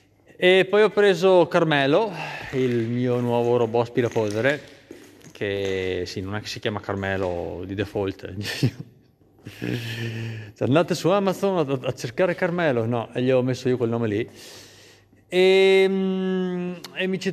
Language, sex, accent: Italian, male, native